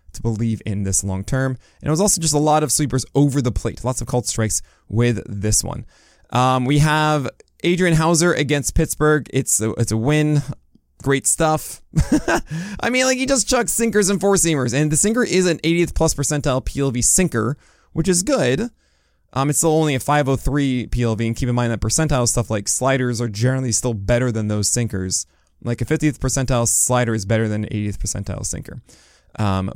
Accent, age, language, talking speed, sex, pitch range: American, 20-39, English, 200 wpm, male, 110-150 Hz